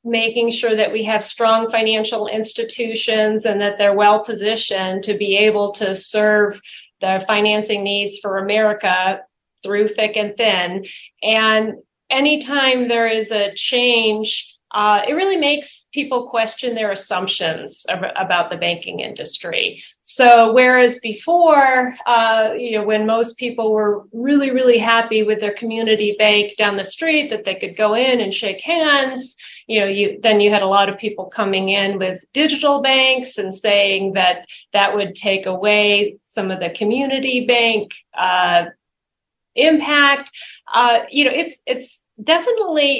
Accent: American